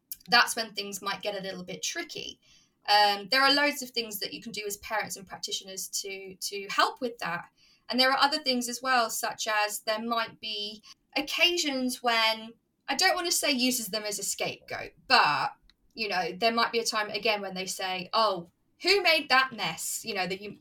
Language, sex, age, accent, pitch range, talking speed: English, female, 20-39, British, 200-255 Hz, 215 wpm